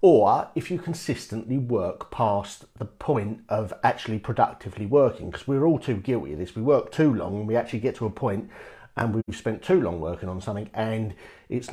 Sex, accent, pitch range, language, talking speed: male, British, 105-125 Hz, English, 205 wpm